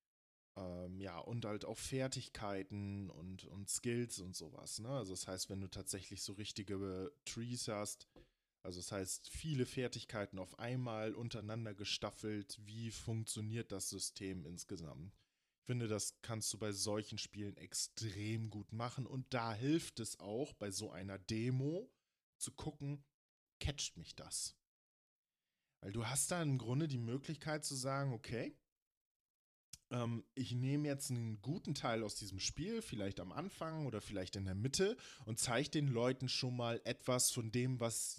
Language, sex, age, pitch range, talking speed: German, male, 10-29, 100-130 Hz, 155 wpm